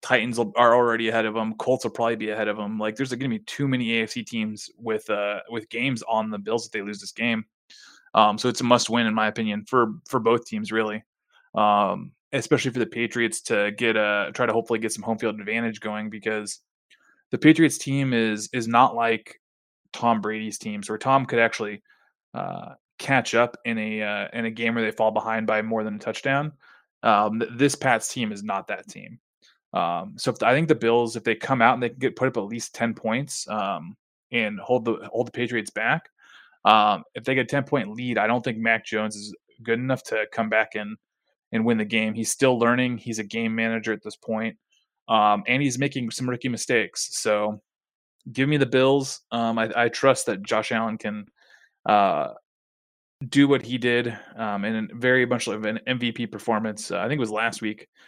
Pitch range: 110-125 Hz